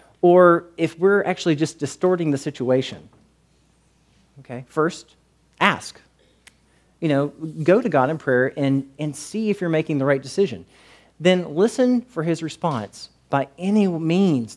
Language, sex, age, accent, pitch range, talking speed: English, male, 40-59, American, 130-180 Hz, 145 wpm